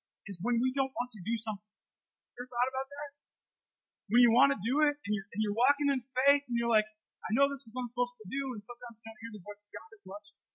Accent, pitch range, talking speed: American, 205-310 Hz, 285 wpm